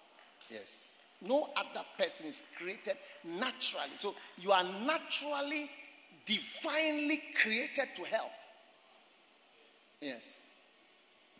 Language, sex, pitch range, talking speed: English, male, 240-315 Hz, 85 wpm